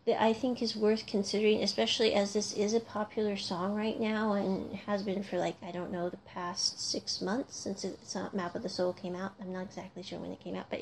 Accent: American